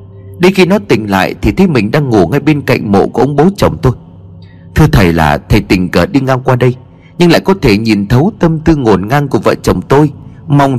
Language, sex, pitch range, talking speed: Vietnamese, male, 100-150 Hz, 245 wpm